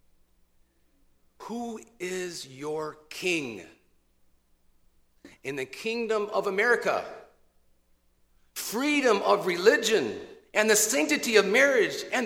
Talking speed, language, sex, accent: 90 wpm, English, male, American